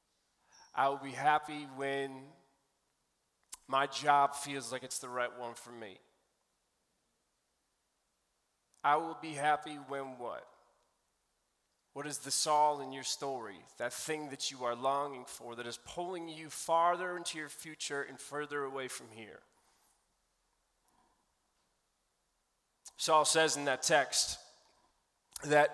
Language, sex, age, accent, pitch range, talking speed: English, male, 30-49, American, 140-180 Hz, 125 wpm